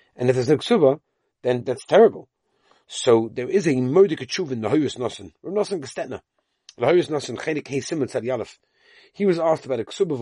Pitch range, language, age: 125-195 Hz, English, 40-59